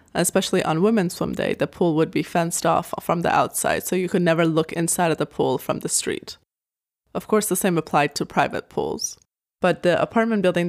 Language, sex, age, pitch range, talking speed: English, female, 20-39, 160-185 Hz, 215 wpm